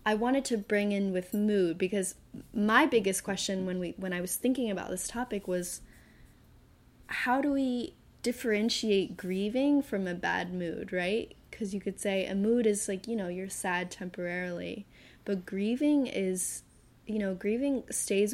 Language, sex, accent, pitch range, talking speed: English, female, American, 180-225 Hz, 165 wpm